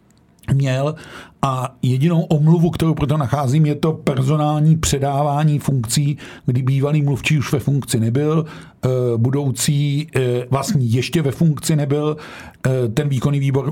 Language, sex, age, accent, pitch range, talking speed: Czech, male, 50-69, native, 120-145 Hz, 125 wpm